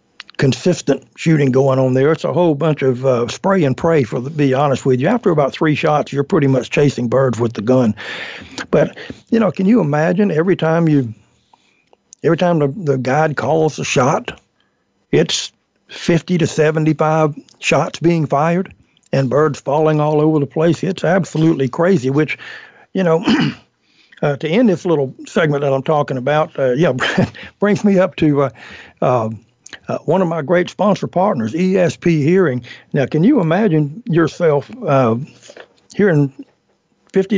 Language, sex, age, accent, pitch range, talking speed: English, male, 60-79, American, 140-185 Hz, 170 wpm